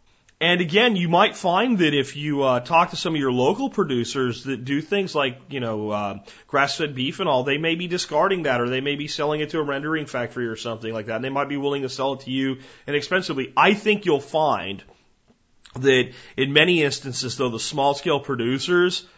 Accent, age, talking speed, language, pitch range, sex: American, 30-49, 215 wpm, English, 120-145 Hz, male